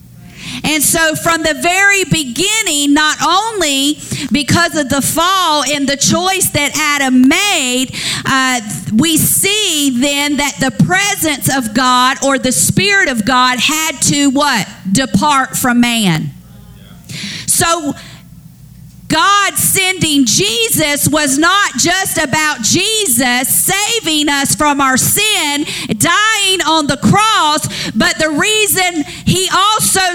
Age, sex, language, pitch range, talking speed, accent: 50-69, female, English, 280-370 Hz, 120 wpm, American